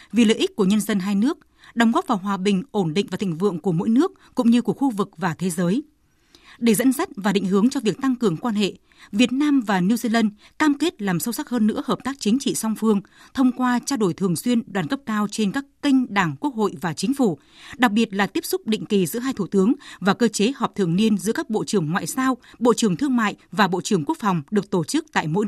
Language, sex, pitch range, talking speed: Vietnamese, female, 200-255 Hz, 270 wpm